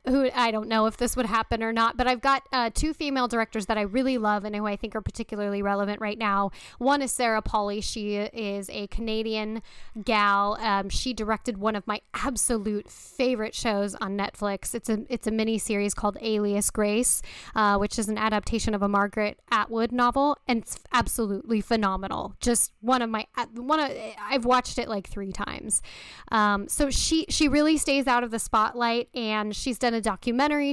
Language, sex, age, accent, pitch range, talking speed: English, female, 10-29, American, 210-245 Hz, 195 wpm